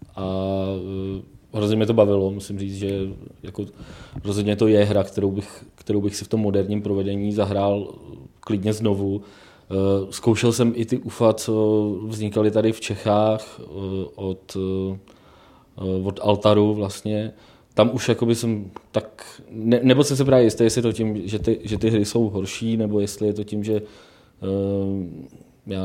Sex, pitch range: male, 100-115 Hz